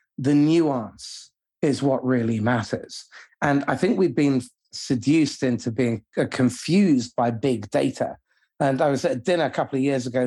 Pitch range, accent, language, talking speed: 125-150 Hz, British, English, 170 wpm